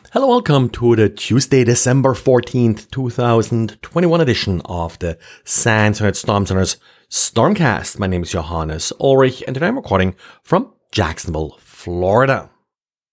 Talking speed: 125 wpm